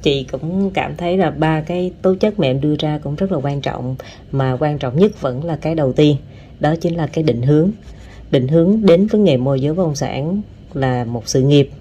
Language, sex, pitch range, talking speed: Vietnamese, female, 130-175 Hz, 230 wpm